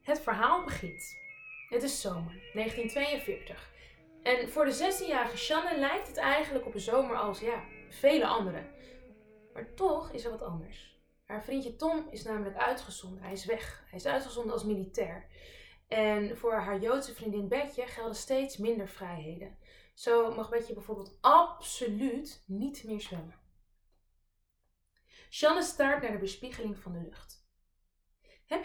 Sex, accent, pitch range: female, Dutch, 185-275 Hz